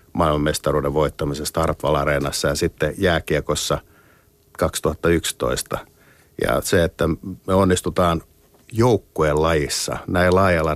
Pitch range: 75-95 Hz